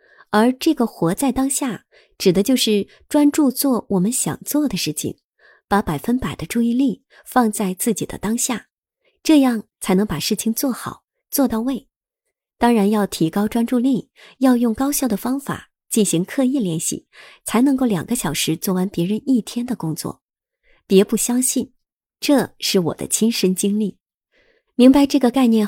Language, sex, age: Chinese, male, 30-49